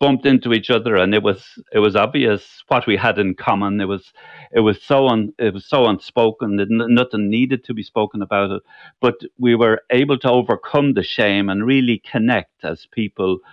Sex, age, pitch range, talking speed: male, 60-79, 95-120 Hz, 210 wpm